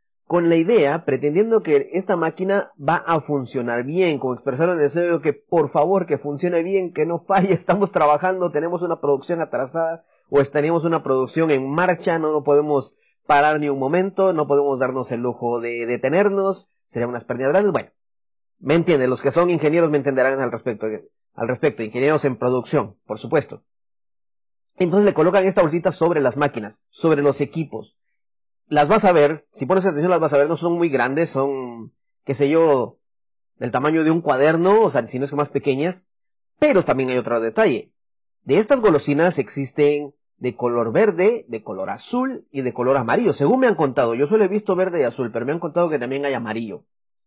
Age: 30-49